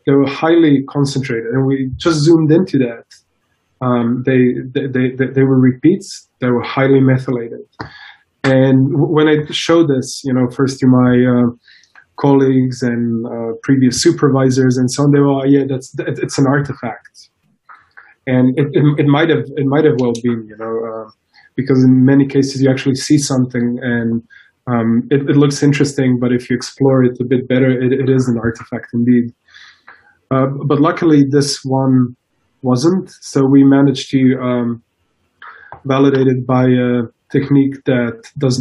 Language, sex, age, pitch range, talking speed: English, male, 20-39, 125-140 Hz, 165 wpm